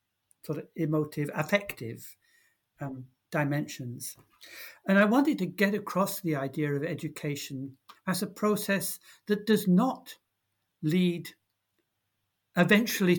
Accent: British